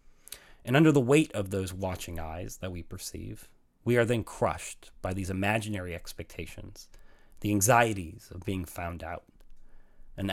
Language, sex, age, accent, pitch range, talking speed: English, male, 30-49, American, 90-115 Hz, 150 wpm